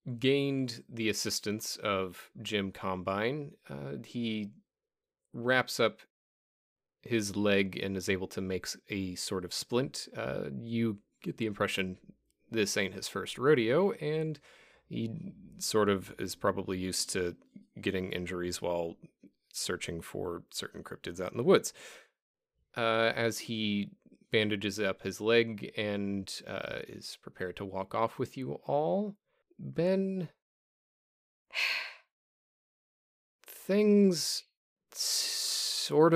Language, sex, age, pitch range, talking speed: English, male, 30-49, 95-140 Hz, 115 wpm